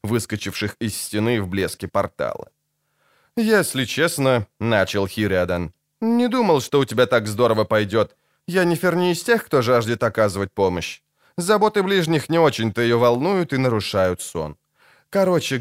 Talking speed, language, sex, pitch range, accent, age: 140 wpm, Ukrainian, male, 110-165 Hz, native, 20-39